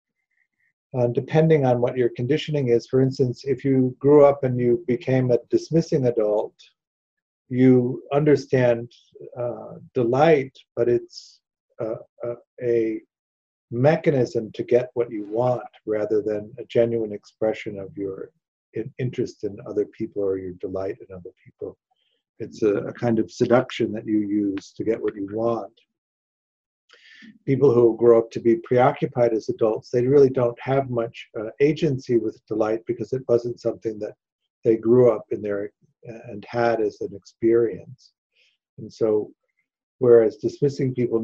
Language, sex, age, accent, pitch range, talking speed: English, male, 50-69, American, 110-130 Hz, 150 wpm